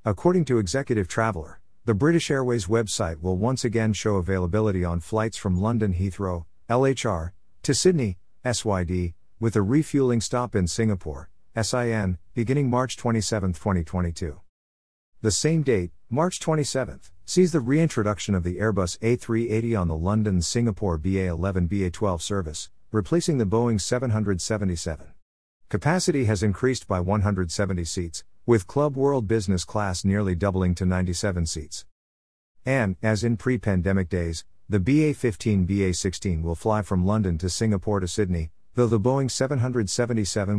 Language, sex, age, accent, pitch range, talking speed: English, male, 50-69, American, 90-115 Hz, 135 wpm